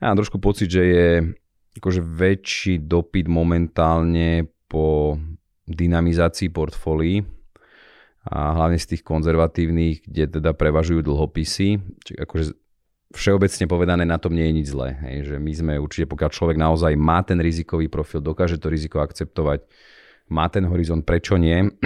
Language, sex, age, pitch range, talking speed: Slovak, male, 30-49, 80-90 Hz, 150 wpm